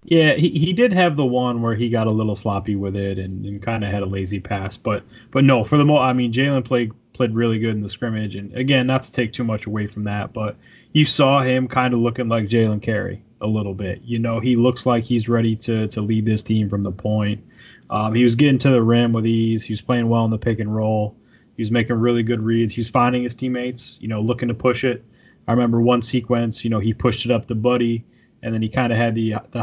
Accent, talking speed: American, 270 wpm